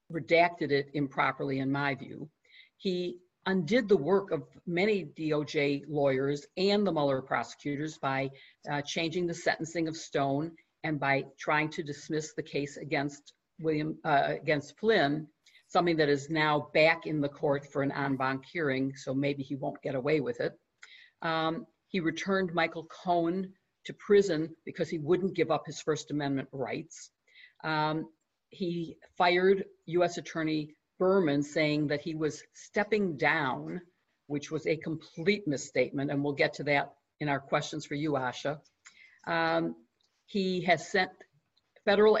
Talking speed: 150 wpm